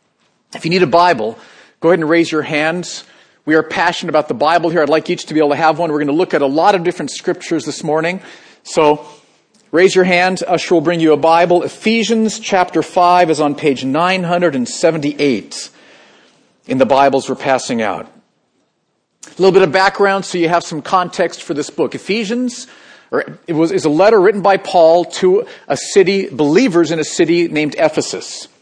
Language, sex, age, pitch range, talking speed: English, male, 40-59, 160-200 Hz, 190 wpm